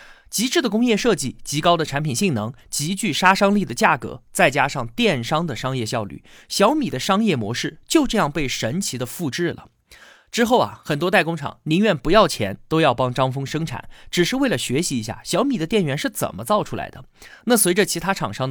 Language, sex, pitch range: Chinese, male, 130-200 Hz